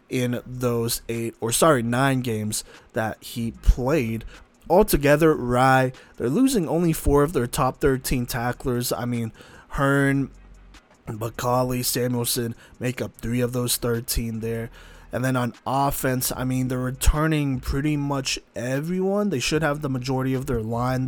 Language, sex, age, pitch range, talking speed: English, male, 20-39, 120-145 Hz, 150 wpm